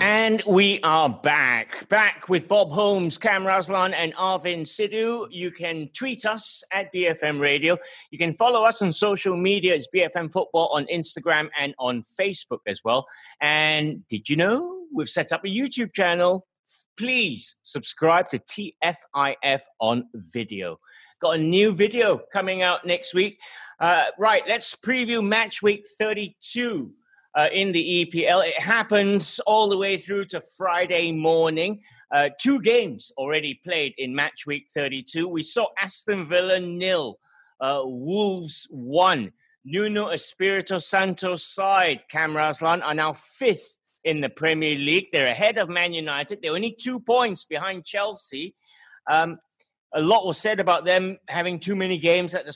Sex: male